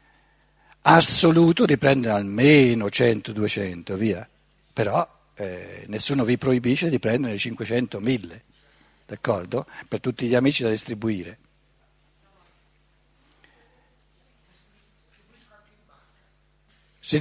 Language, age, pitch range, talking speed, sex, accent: Italian, 60-79, 115-170 Hz, 75 wpm, male, native